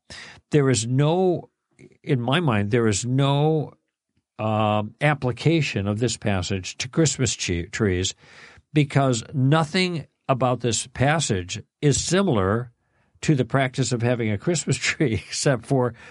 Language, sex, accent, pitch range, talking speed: English, male, American, 105-135 Hz, 125 wpm